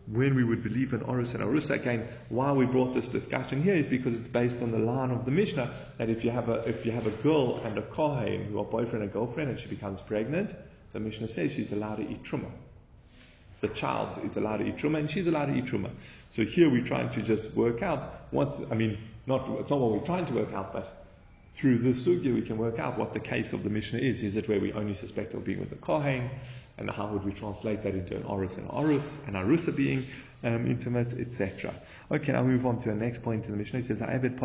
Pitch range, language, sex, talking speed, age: 105-130 Hz, English, male, 245 wpm, 30-49